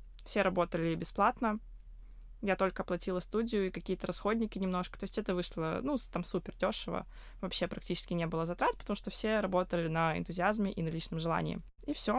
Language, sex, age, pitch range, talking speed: Russian, female, 20-39, 175-205 Hz, 175 wpm